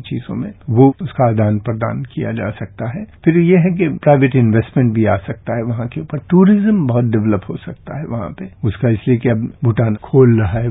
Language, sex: Hindi, male